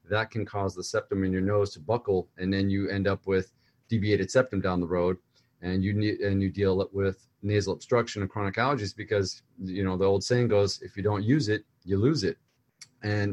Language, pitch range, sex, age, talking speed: English, 100-120 Hz, male, 30-49, 220 wpm